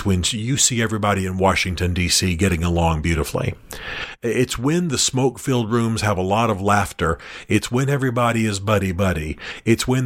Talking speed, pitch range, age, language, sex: 160 wpm, 95-115 Hz, 40-59, English, male